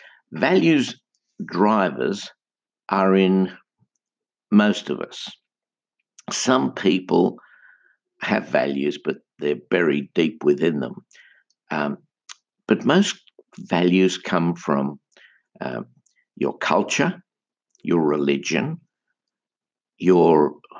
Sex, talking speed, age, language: male, 85 wpm, 60-79, English